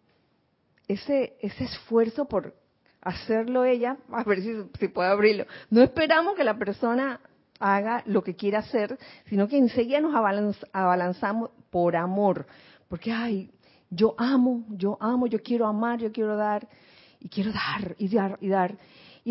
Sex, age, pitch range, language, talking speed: female, 40-59, 185-250 Hz, Spanish, 150 wpm